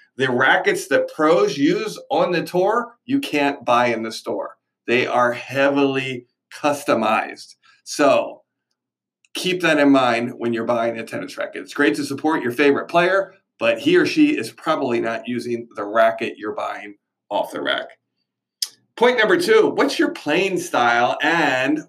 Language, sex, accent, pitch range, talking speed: English, male, American, 125-195 Hz, 160 wpm